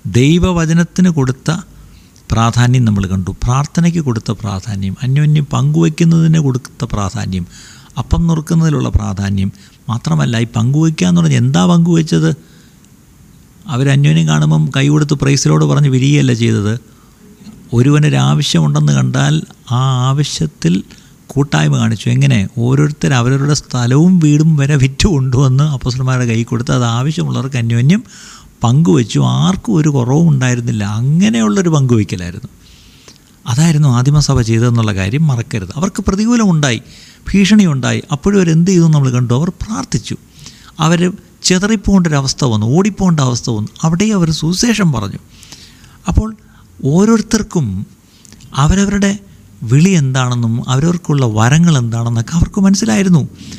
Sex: male